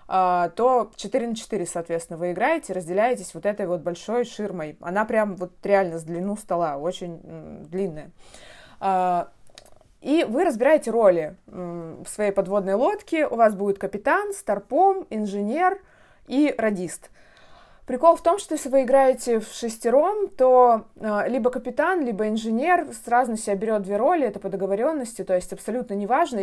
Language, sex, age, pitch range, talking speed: Russian, female, 20-39, 185-255 Hz, 150 wpm